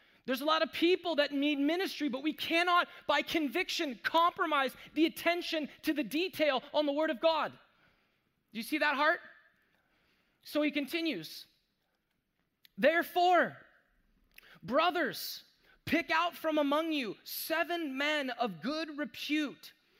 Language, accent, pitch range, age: English, American, 225-310 Hz, 20-39